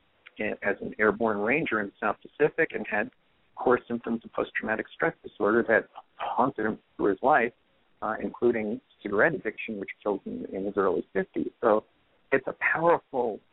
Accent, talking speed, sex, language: American, 165 wpm, male, English